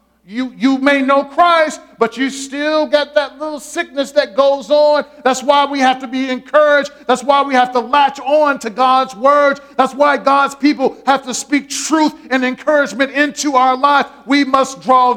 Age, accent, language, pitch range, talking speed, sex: 40-59, American, English, 175-275 Hz, 190 wpm, male